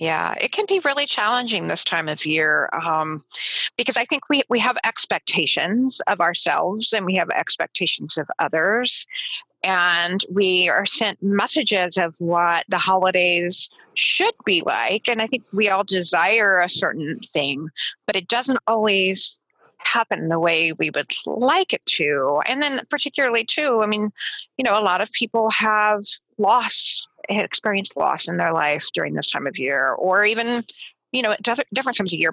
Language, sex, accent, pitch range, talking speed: English, female, American, 175-230 Hz, 170 wpm